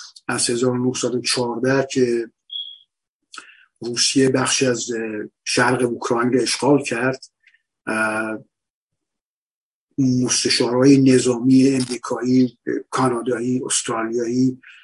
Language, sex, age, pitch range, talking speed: Persian, male, 50-69, 120-130 Hz, 65 wpm